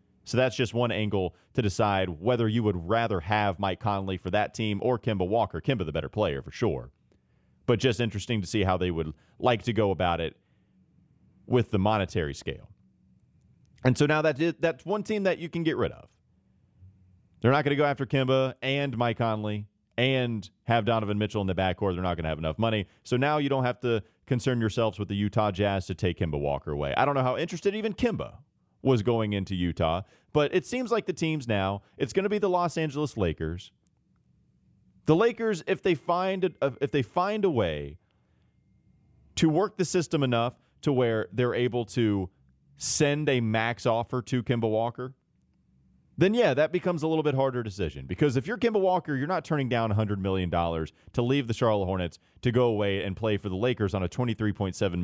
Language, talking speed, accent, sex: English, 200 wpm, American, male